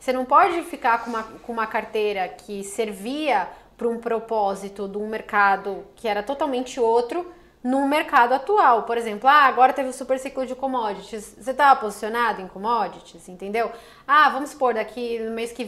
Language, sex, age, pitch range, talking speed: English, female, 10-29, 225-270 Hz, 175 wpm